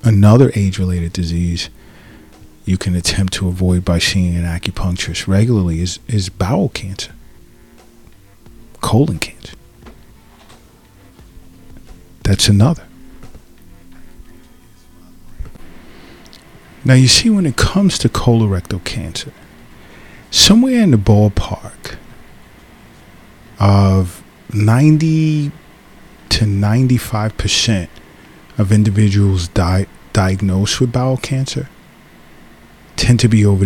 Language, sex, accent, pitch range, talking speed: English, male, American, 90-110 Hz, 85 wpm